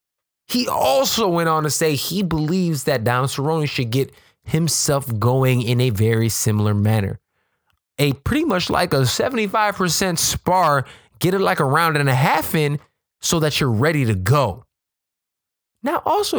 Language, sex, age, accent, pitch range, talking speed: English, male, 20-39, American, 125-170 Hz, 160 wpm